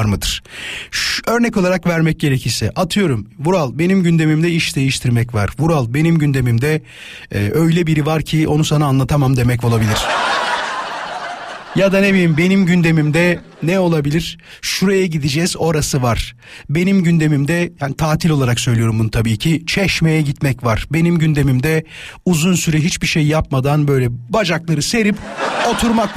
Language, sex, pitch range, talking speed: Turkish, male, 145-185 Hz, 140 wpm